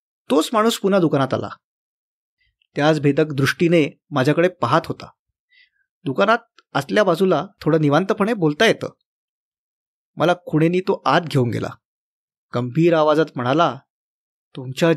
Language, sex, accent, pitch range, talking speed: Marathi, male, native, 145-185 Hz, 110 wpm